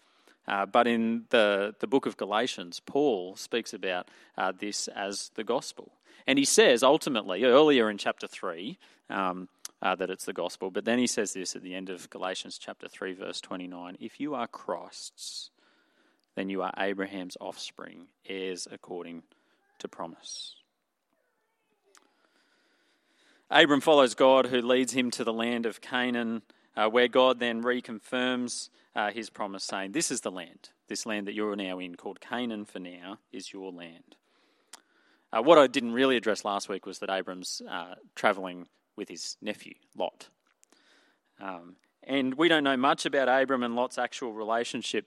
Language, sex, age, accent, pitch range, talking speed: English, male, 30-49, Australian, 95-130 Hz, 160 wpm